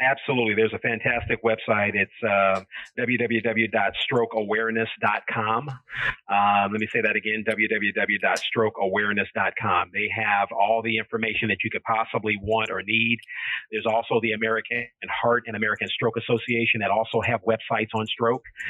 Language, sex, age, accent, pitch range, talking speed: English, male, 40-59, American, 110-115 Hz, 135 wpm